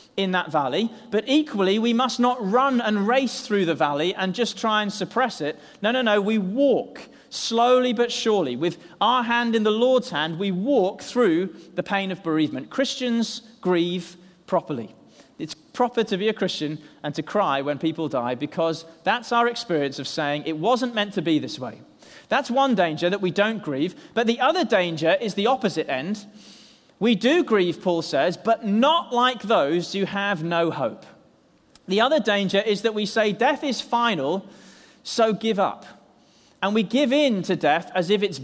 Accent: British